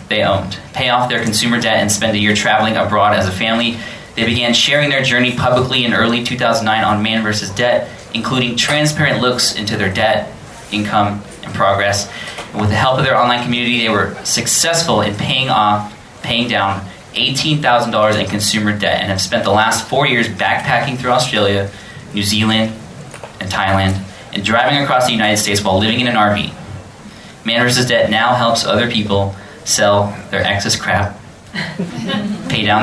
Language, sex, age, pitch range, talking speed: English, male, 20-39, 105-125 Hz, 175 wpm